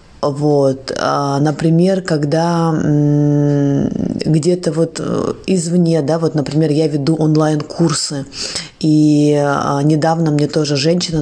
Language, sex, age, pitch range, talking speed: Russian, female, 20-39, 150-170 Hz, 90 wpm